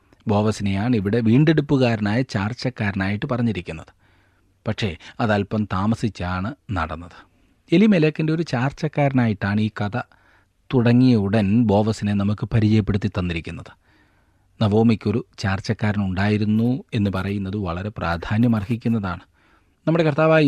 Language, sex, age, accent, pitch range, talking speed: Malayalam, male, 30-49, native, 95-115 Hz, 80 wpm